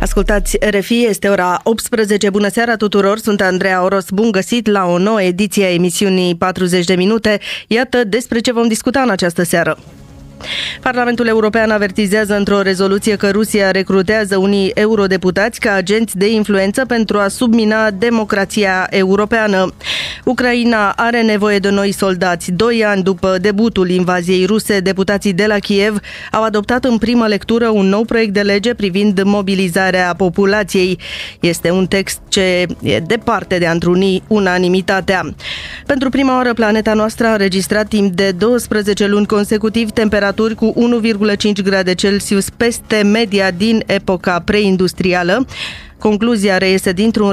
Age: 20-39